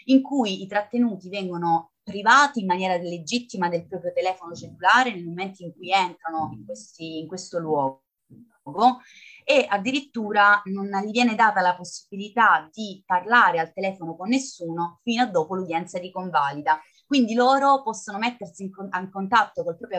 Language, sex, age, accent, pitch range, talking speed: Italian, female, 30-49, native, 180-225 Hz, 155 wpm